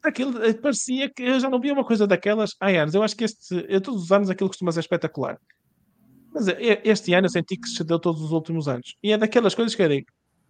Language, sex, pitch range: English, male, 165-205 Hz